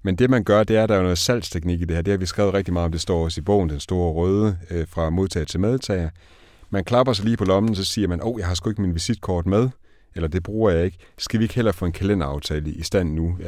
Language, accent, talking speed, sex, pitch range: Danish, native, 295 wpm, male, 85-105 Hz